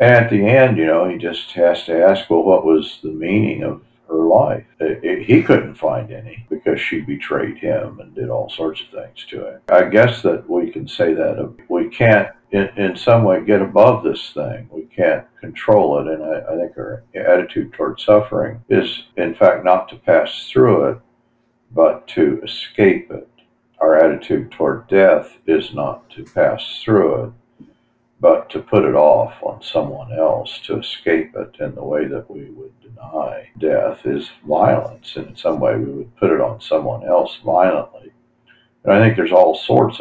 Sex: male